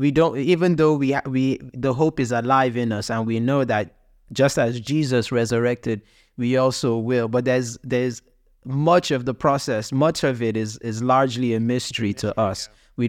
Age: 20-39